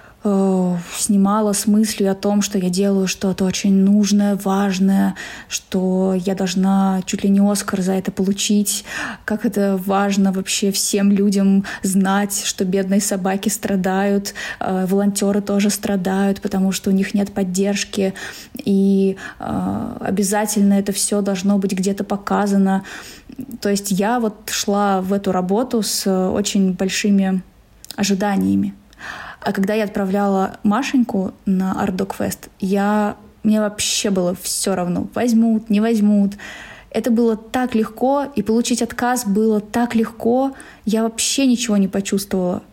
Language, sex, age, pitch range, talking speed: Russian, female, 20-39, 195-215 Hz, 130 wpm